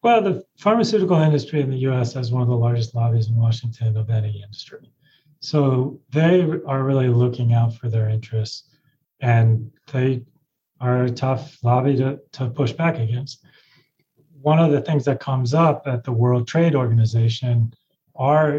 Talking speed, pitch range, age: 165 wpm, 115-140 Hz, 30-49